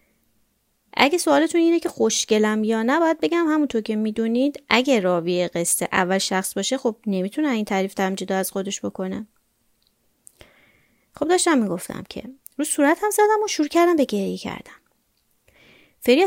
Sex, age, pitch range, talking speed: female, 30-49, 195-270 Hz, 155 wpm